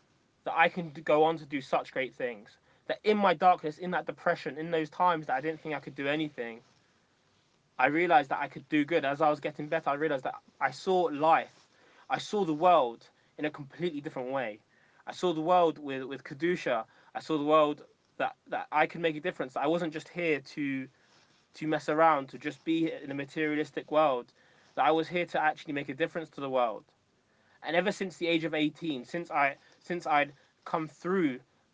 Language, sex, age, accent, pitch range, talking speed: English, male, 20-39, British, 140-170 Hz, 215 wpm